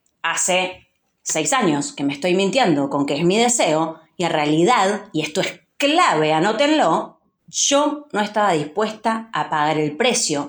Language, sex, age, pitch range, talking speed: Spanish, female, 30-49, 170-275 Hz, 160 wpm